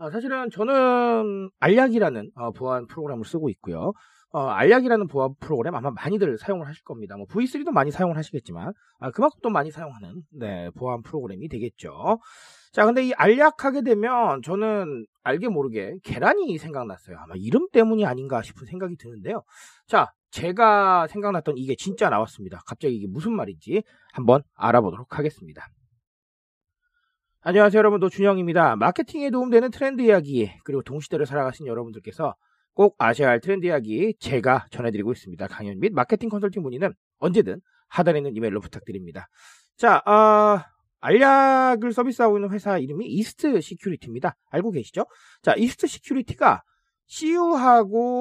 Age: 40-59